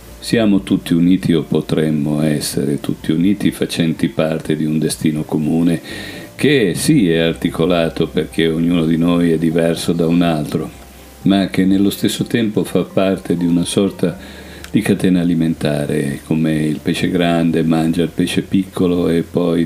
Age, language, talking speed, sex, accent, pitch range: 50-69, Italian, 155 wpm, male, native, 75-90 Hz